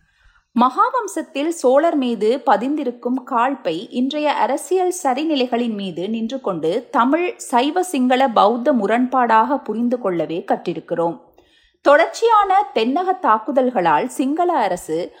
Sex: female